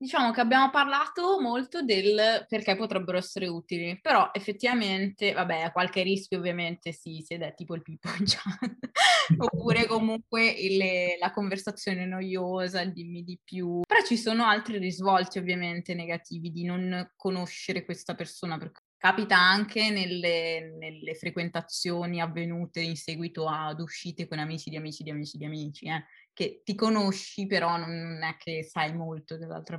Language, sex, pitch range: Italian, female, 170-205 Hz